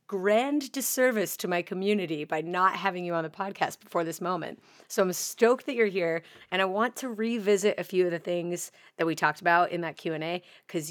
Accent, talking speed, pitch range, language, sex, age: American, 225 wpm, 165-210 Hz, English, female, 30-49